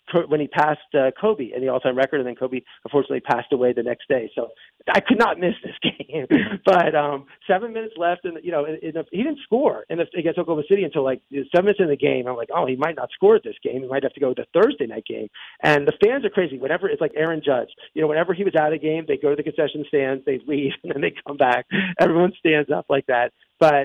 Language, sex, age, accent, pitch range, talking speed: English, male, 40-59, American, 135-180 Hz, 265 wpm